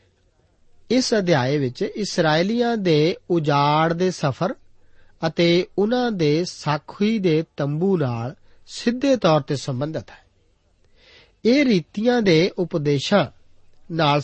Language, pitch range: Punjabi, 130-200 Hz